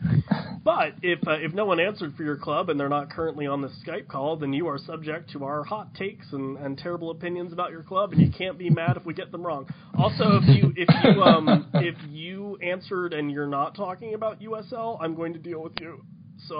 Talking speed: 235 wpm